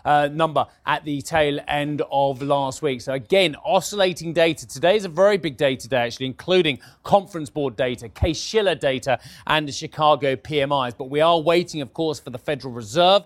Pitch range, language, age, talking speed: 135-175 Hz, English, 30-49, 185 wpm